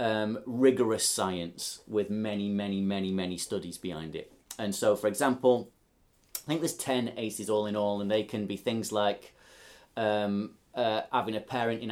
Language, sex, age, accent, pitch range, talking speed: English, male, 30-49, British, 105-135 Hz, 175 wpm